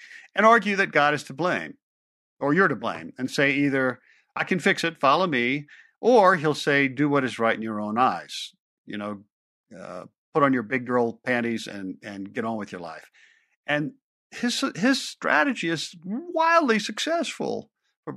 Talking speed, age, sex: 180 wpm, 50-69, male